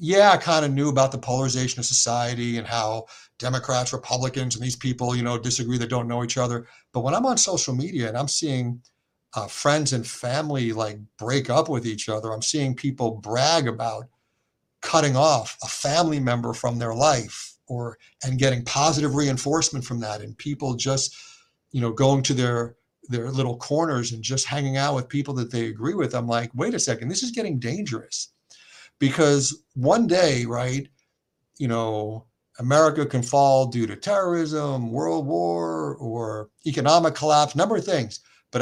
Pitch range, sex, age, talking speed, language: 120-145 Hz, male, 60-79, 180 wpm, English